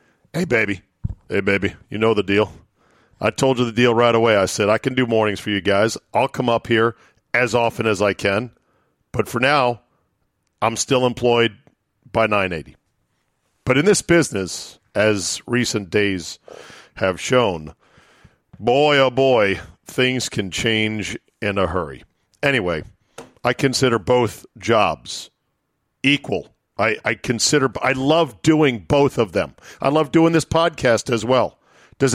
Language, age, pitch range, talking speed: English, 50-69, 110-135 Hz, 155 wpm